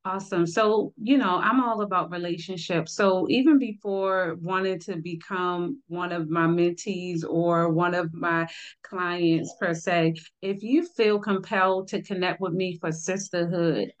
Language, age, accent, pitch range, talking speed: English, 30-49, American, 175-205 Hz, 150 wpm